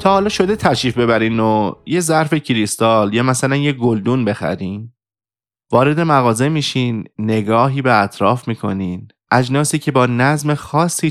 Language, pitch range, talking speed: Persian, 110-150 Hz, 140 wpm